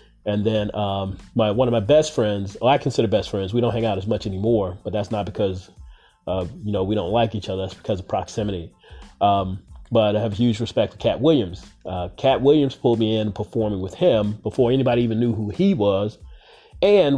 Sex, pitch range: male, 100-120 Hz